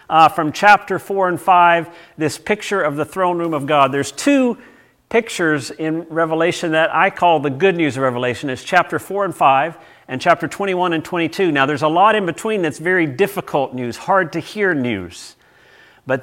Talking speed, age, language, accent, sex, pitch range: 190 wpm, 50-69, English, American, male, 145-185 Hz